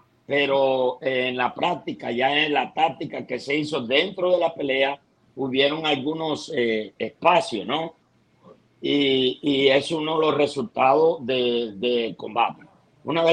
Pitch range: 125-155 Hz